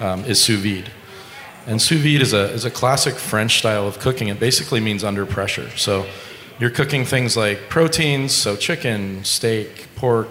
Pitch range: 100-120 Hz